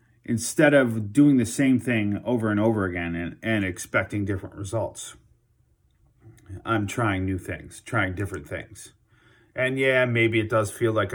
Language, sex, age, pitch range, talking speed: English, male, 30-49, 95-115 Hz, 155 wpm